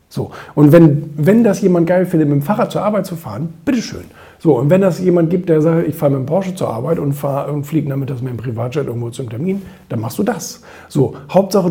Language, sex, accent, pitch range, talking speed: German, male, German, 120-165 Hz, 245 wpm